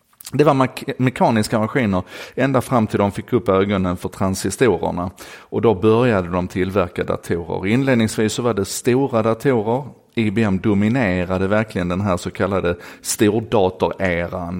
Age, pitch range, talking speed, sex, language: 30-49, 95-115 Hz, 135 wpm, male, Swedish